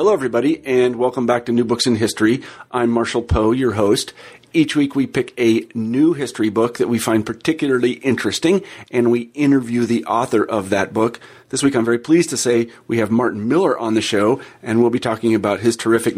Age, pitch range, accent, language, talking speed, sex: 40-59, 110-125 Hz, American, English, 210 wpm, male